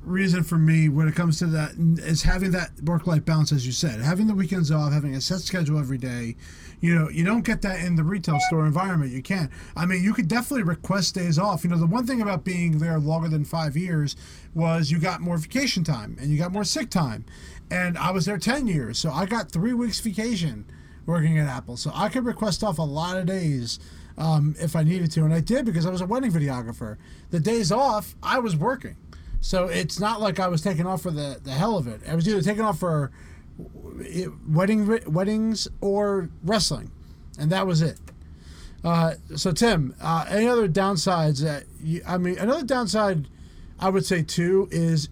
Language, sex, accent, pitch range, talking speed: English, male, American, 150-195 Hz, 215 wpm